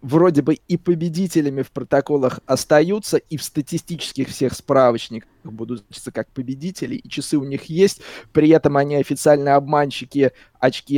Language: Russian